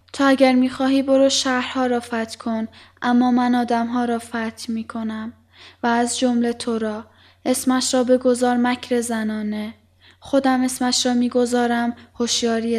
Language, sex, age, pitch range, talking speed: Persian, female, 10-29, 235-270 Hz, 145 wpm